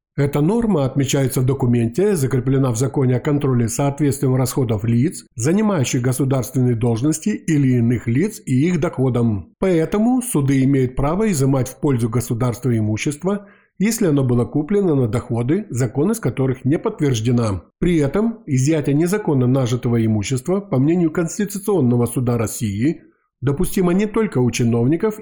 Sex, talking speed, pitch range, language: male, 140 wpm, 125-160 Hz, Ukrainian